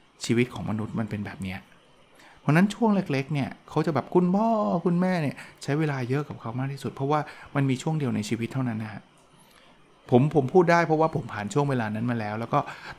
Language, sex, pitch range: Thai, male, 115-155 Hz